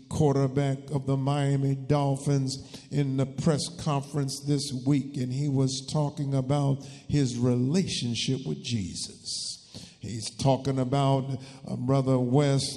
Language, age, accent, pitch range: English, 50-69, American, 130-145 Hz